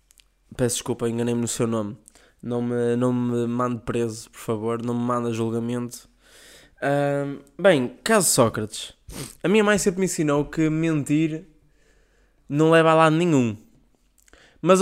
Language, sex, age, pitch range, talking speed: Portuguese, male, 20-39, 130-180 Hz, 145 wpm